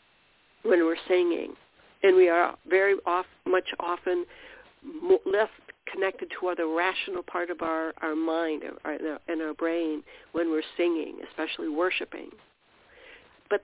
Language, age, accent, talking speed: English, 60-79, American, 135 wpm